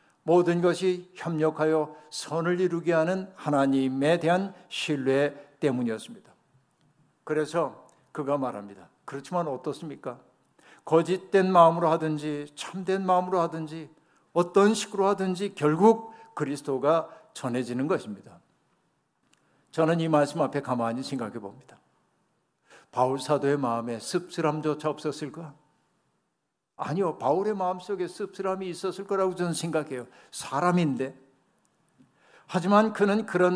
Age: 60-79